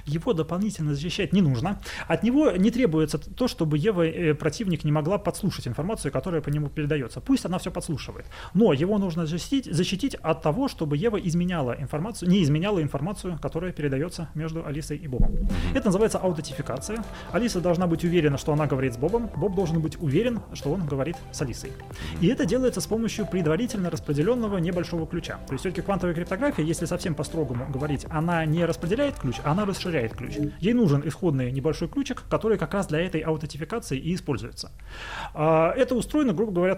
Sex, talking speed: male, 180 wpm